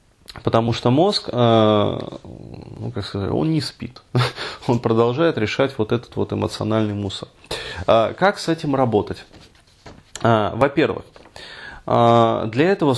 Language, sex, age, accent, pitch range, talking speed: Russian, male, 20-39, native, 110-135 Hz, 110 wpm